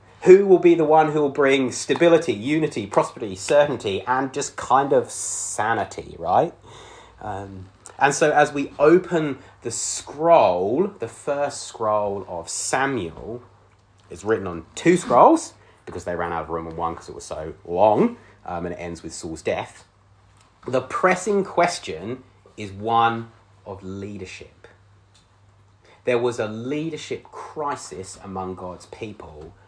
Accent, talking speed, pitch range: British, 145 wpm, 95-135 Hz